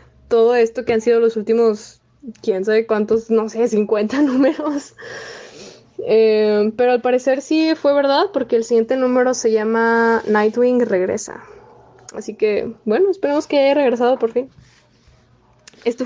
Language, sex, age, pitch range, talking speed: Spanish, female, 10-29, 215-270 Hz, 145 wpm